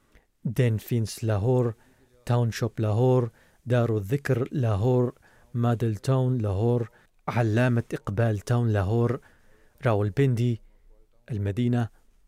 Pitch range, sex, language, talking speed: 110-130 Hz, male, Arabic, 95 wpm